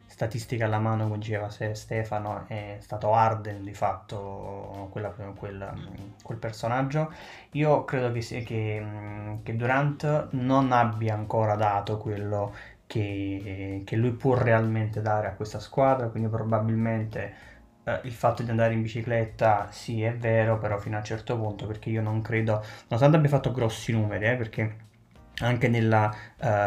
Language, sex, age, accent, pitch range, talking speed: Italian, male, 20-39, native, 105-120 Hz, 145 wpm